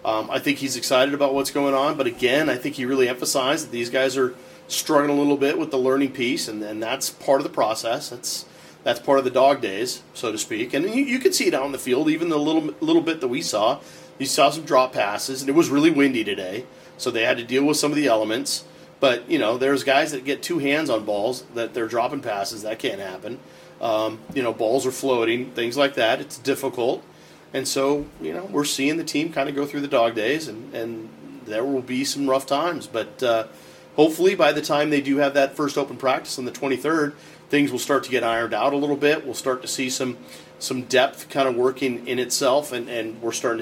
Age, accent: 40-59, American